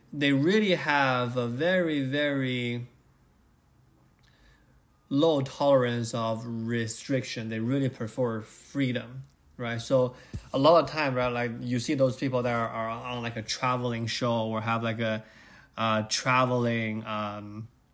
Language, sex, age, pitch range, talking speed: English, male, 20-39, 115-135 Hz, 135 wpm